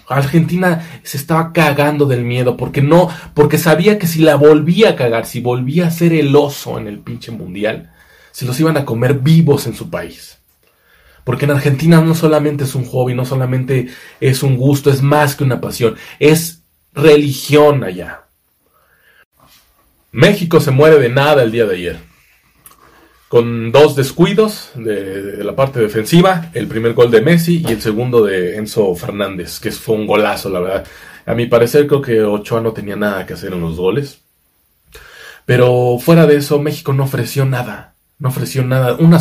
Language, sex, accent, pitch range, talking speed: Spanish, male, Mexican, 115-150 Hz, 180 wpm